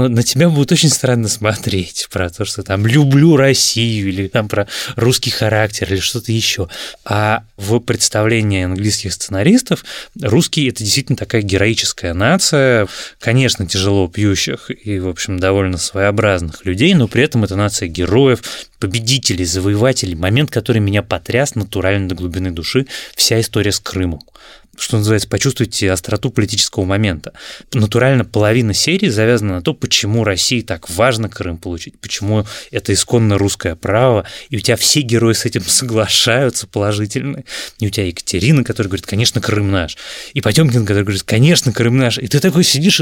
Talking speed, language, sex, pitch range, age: 155 wpm, Russian, male, 100-130 Hz, 20-39